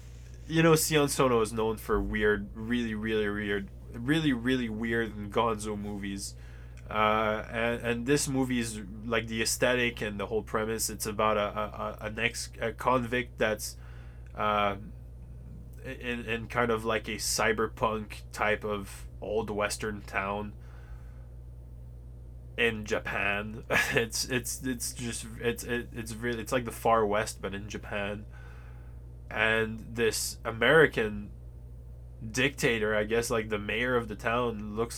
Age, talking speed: 20-39, 140 wpm